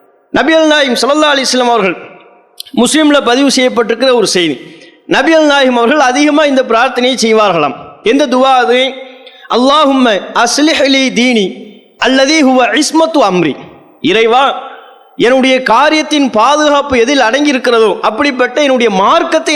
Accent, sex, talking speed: Indian, male, 125 wpm